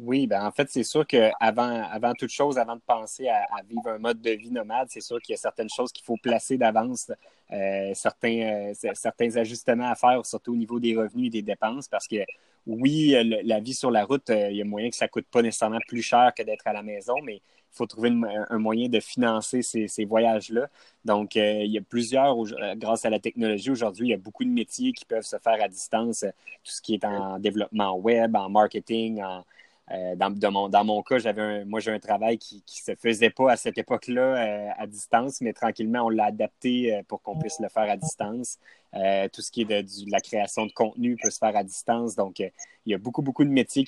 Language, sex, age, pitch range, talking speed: English, male, 20-39, 105-120 Hz, 250 wpm